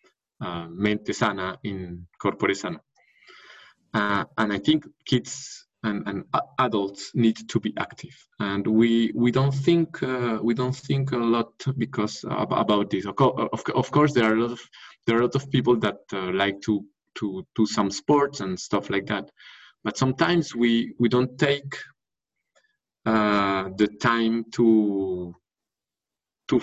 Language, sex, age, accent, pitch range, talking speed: English, male, 20-39, French, 105-130 Hz, 160 wpm